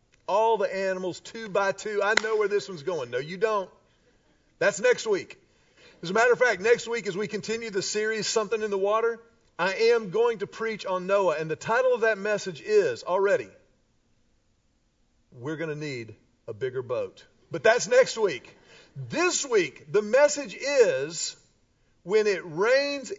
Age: 40-59